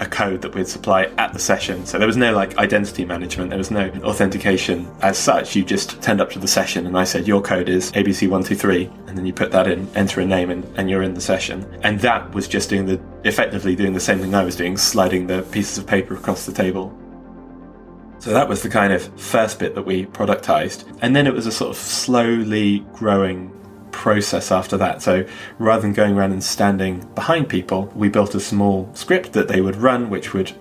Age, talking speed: 20-39, 225 wpm